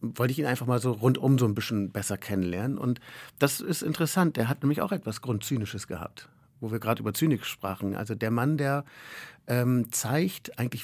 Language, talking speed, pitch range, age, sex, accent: German, 200 wpm, 110-150 Hz, 50-69, male, German